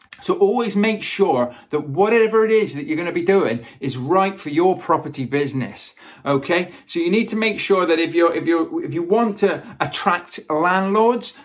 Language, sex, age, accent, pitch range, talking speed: English, male, 40-59, British, 165-220 Hz, 200 wpm